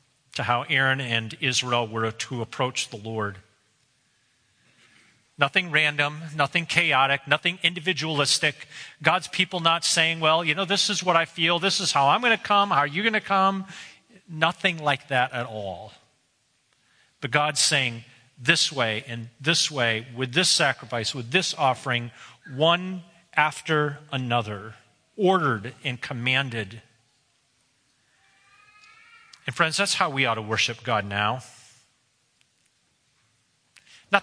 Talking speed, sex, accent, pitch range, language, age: 135 wpm, male, American, 125-165 Hz, English, 40-59